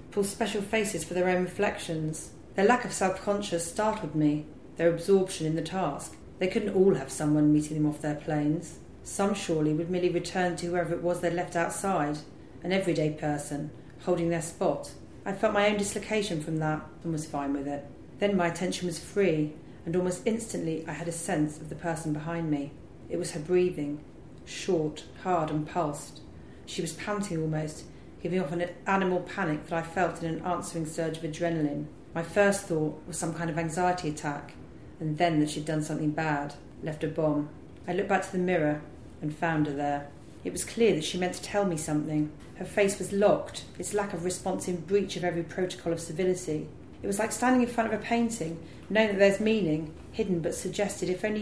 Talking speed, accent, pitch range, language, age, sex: 200 wpm, British, 155-190 Hz, English, 40-59, female